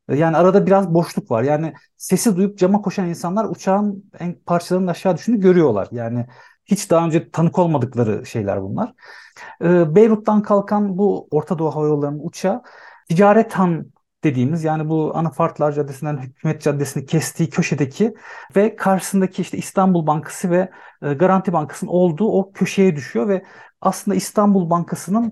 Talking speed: 135 wpm